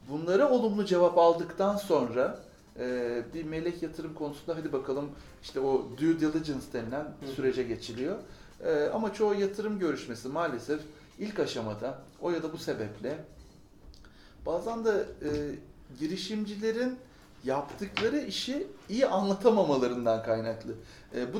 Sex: male